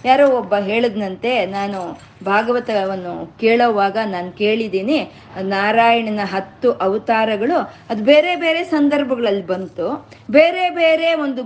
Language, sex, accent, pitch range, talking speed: Kannada, female, native, 195-245 Hz, 100 wpm